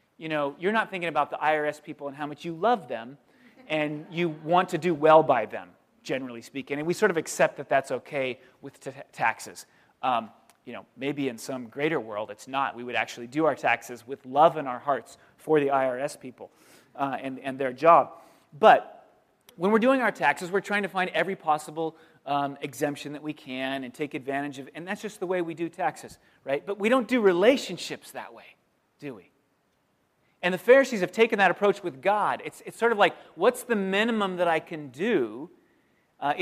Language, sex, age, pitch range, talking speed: English, male, 30-49, 145-190 Hz, 210 wpm